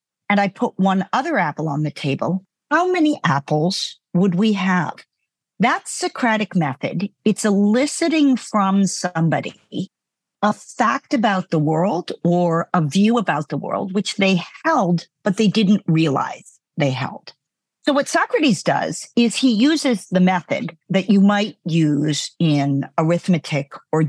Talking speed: 145 wpm